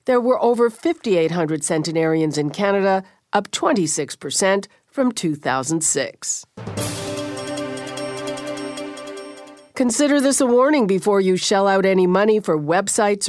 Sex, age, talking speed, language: female, 50-69, 105 wpm, English